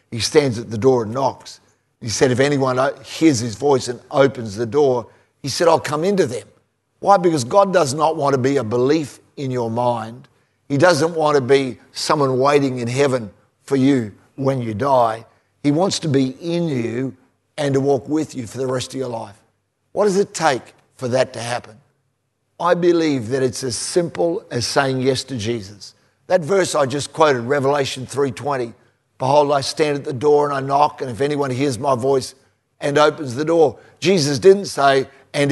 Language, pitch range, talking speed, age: English, 125-150 Hz, 200 wpm, 50-69